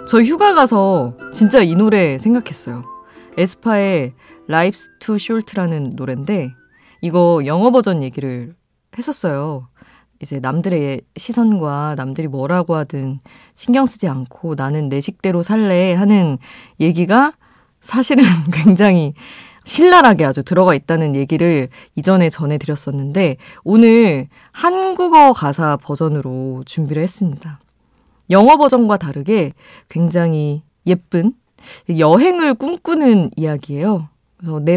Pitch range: 145-215 Hz